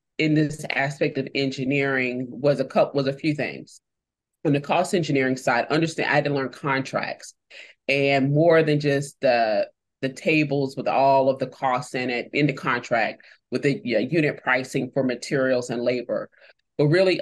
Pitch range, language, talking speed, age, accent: 130-160 Hz, English, 180 wpm, 30-49, American